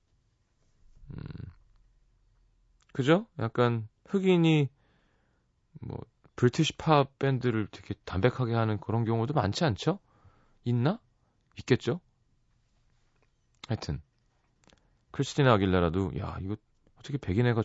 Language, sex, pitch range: Korean, male, 95-130 Hz